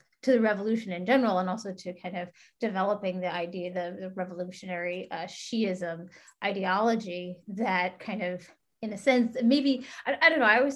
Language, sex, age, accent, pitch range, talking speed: English, female, 30-49, American, 185-240 Hz, 180 wpm